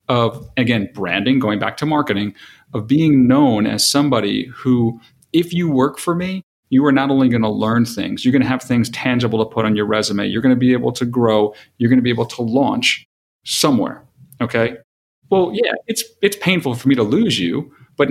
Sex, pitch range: male, 110-145 Hz